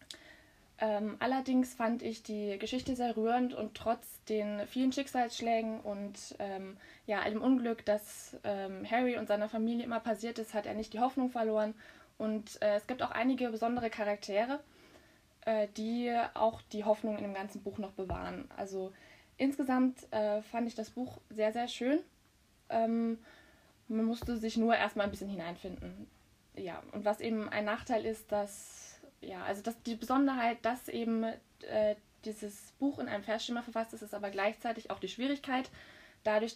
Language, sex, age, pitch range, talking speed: German, female, 20-39, 210-245 Hz, 165 wpm